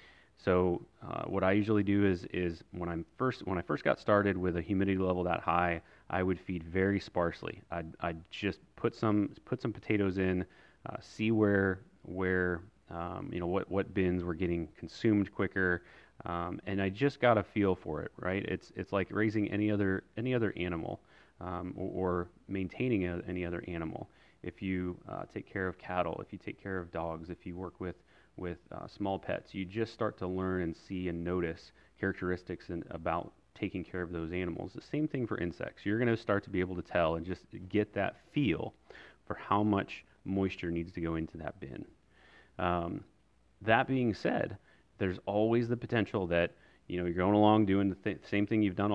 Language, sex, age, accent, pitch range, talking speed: English, male, 30-49, American, 90-100 Hz, 200 wpm